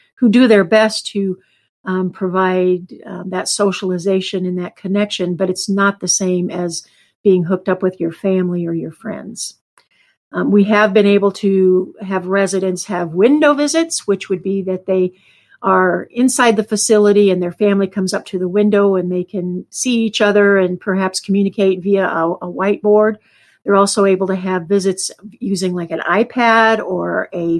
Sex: female